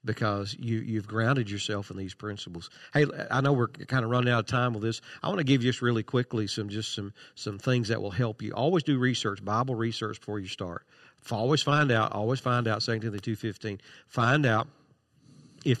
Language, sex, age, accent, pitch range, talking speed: English, male, 50-69, American, 105-130 Hz, 215 wpm